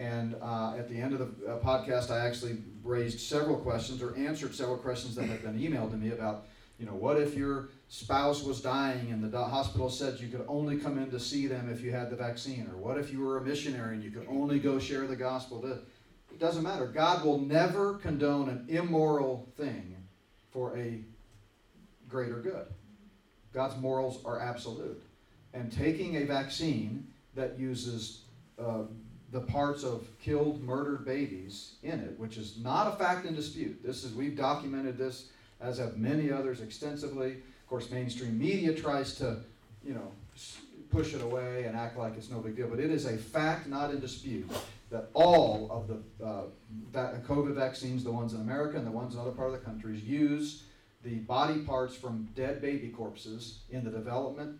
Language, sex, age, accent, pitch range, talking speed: English, male, 40-59, American, 115-140 Hz, 190 wpm